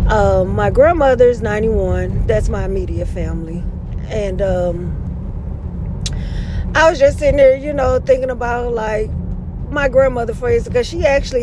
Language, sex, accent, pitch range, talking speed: English, female, American, 215-300 Hz, 140 wpm